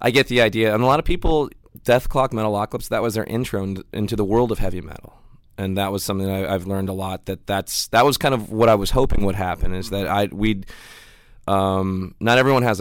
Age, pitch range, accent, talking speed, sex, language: 20-39, 95-110 Hz, American, 245 wpm, male, English